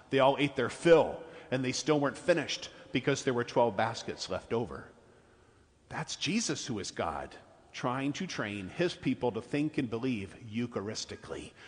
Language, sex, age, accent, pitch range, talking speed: English, male, 50-69, American, 120-150 Hz, 165 wpm